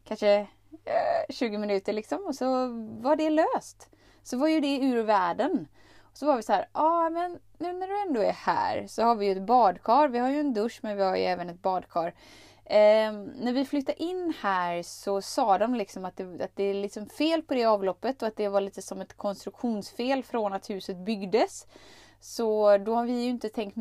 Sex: female